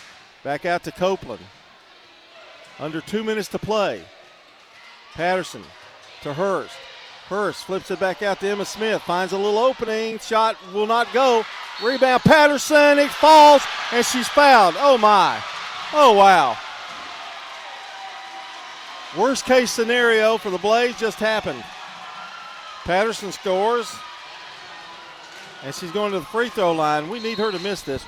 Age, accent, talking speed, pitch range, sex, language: 40-59, American, 135 wpm, 185-225 Hz, male, English